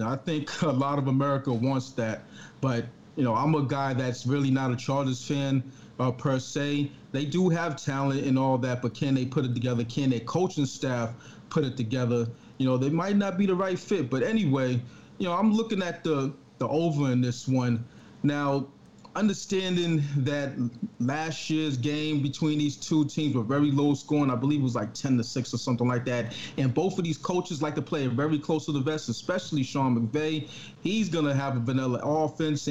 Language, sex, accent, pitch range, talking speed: English, male, American, 130-165 Hz, 210 wpm